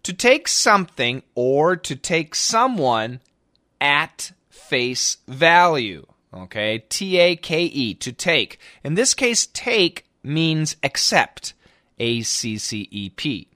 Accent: American